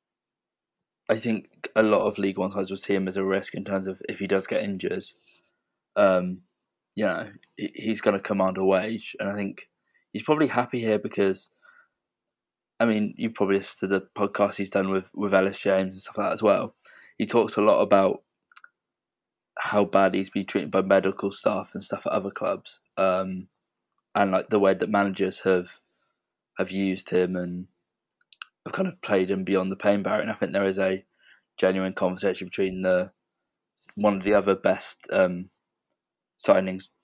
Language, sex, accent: English, male, British